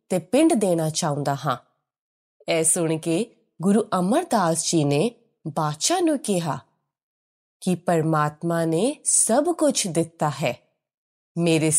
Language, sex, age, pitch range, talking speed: Punjabi, female, 20-39, 165-255 Hz, 115 wpm